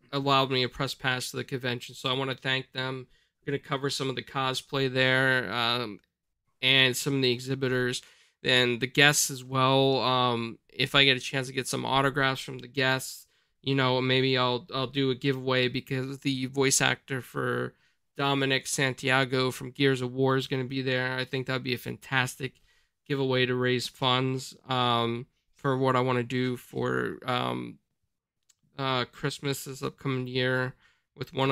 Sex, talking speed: male, 185 wpm